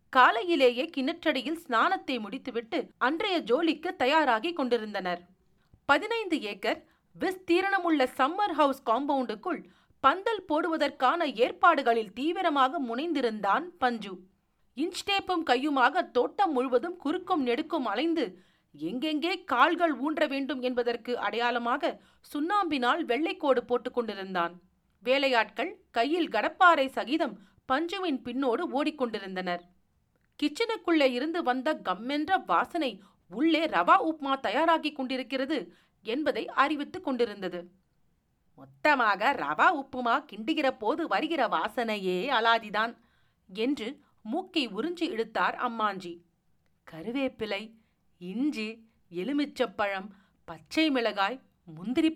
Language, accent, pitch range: Tamil, native, 225-320 Hz